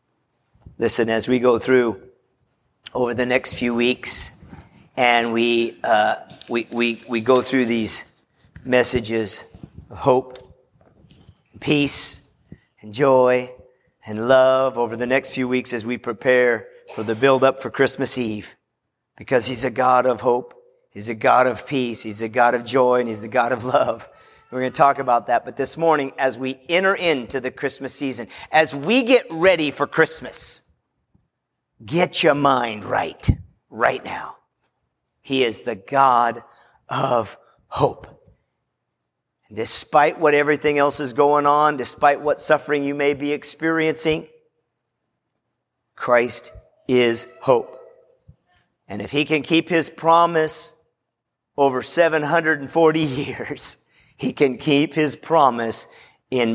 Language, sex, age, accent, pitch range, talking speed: English, male, 40-59, American, 120-150 Hz, 140 wpm